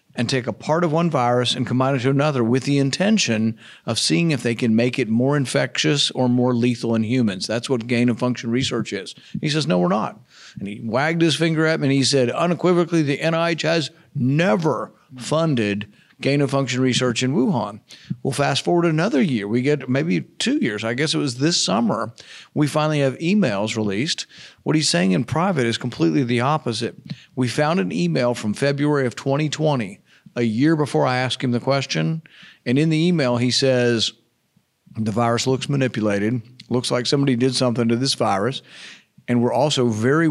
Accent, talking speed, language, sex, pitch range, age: American, 190 wpm, English, male, 120-150 Hz, 50-69